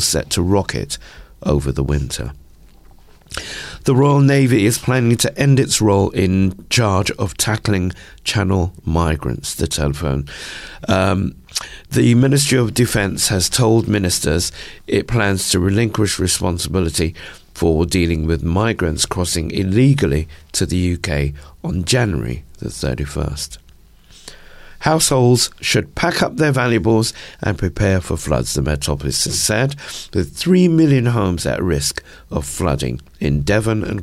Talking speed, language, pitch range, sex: 130 wpm, English, 80-110 Hz, male